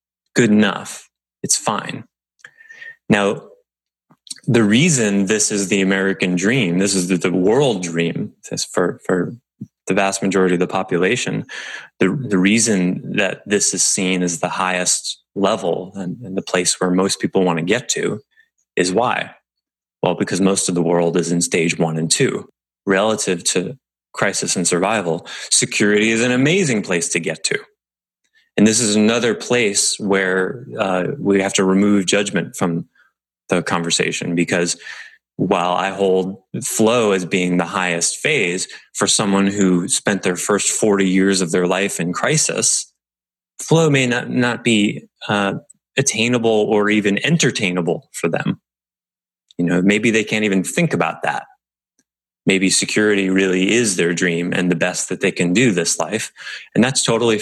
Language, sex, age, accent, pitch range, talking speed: English, male, 20-39, American, 90-105 Hz, 160 wpm